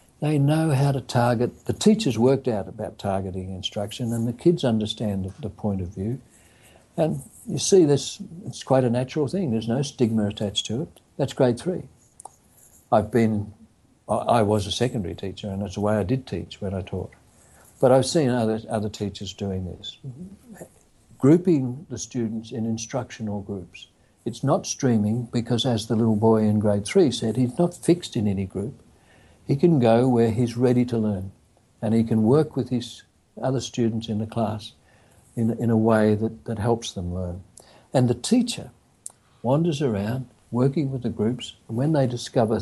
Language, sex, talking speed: English, male, 180 wpm